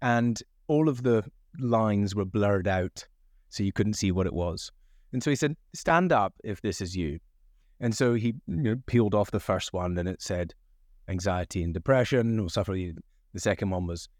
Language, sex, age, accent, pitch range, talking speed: English, male, 30-49, British, 95-135 Hz, 200 wpm